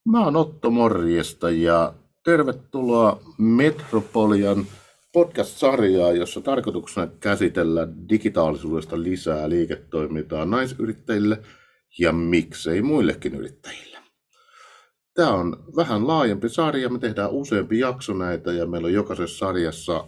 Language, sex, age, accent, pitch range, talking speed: Finnish, male, 50-69, native, 80-115 Hz, 100 wpm